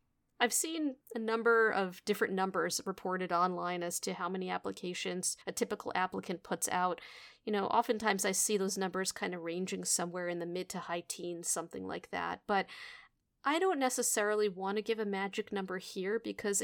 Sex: female